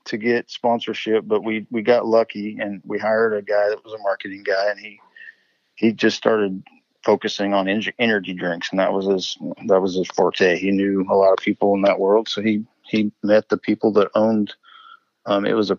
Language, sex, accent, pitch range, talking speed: English, male, American, 100-115 Hz, 215 wpm